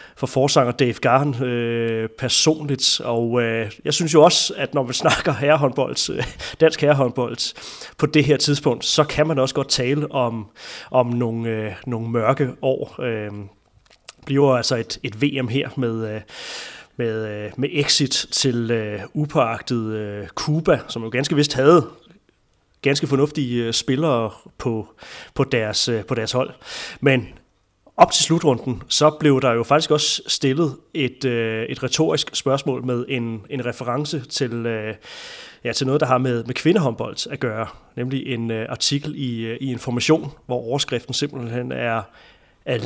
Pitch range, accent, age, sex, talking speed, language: 115-145 Hz, native, 30-49, male, 160 wpm, Danish